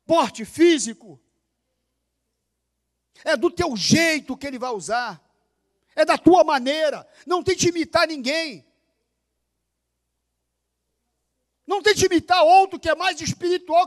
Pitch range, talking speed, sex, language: 225-370 Hz, 115 wpm, male, Portuguese